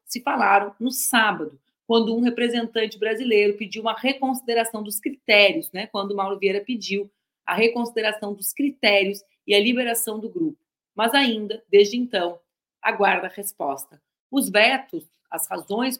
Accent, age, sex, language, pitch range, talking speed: Brazilian, 40-59, female, Portuguese, 200-255 Hz, 145 wpm